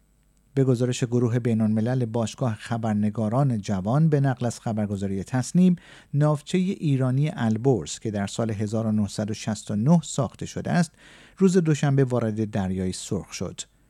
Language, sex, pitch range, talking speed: Persian, male, 110-155 Hz, 125 wpm